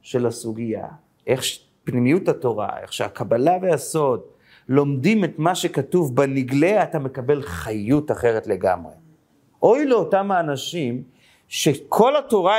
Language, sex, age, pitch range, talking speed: Hebrew, male, 40-59, 145-215 Hz, 110 wpm